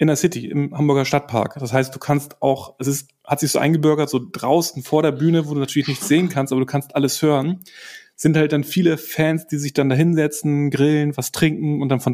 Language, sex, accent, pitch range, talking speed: German, male, German, 130-160 Hz, 240 wpm